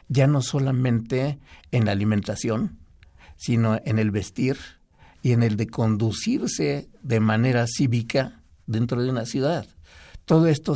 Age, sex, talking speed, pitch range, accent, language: 50-69, male, 135 wpm, 110-135 Hz, Mexican, Spanish